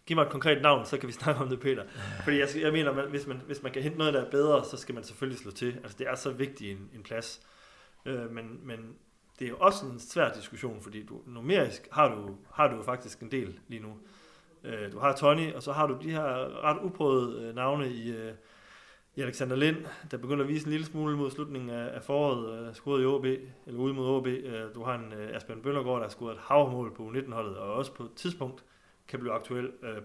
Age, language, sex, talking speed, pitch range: 30-49, Danish, male, 245 wpm, 115-140 Hz